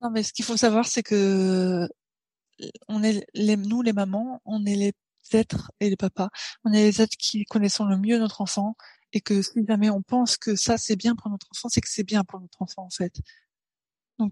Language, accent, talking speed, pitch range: French, French, 225 wpm, 200-225 Hz